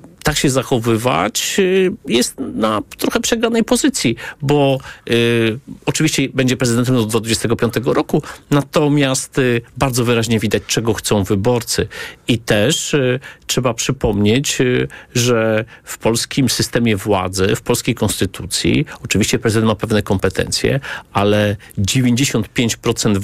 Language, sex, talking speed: Polish, male, 115 wpm